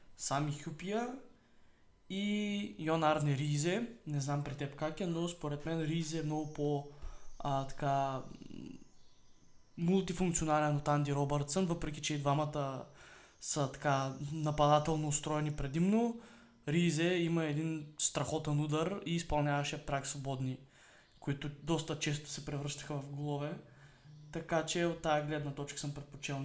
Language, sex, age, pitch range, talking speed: Bulgarian, male, 20-39, 140-165 Hz, 125 wpm